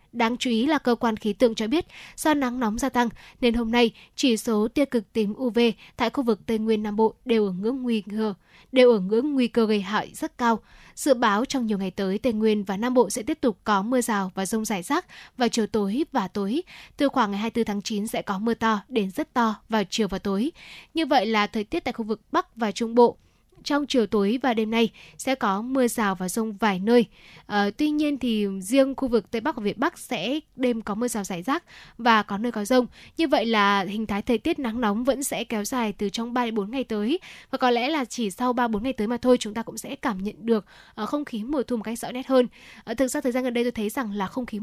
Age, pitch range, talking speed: 10-29, 210-255 Hz, 265 wpm